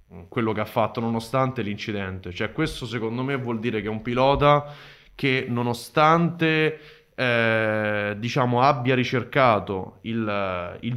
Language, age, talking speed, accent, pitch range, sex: Italian, 20-39, 130 wpm, native, 115-155 Hz, male